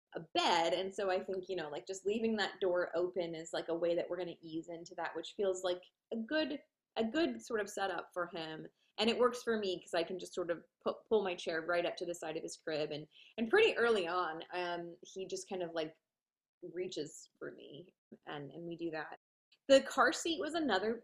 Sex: female